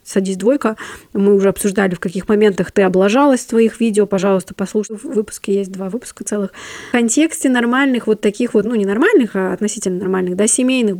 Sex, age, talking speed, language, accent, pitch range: female, 20-39, 190 wpm, Russian, native, 185-225 Hz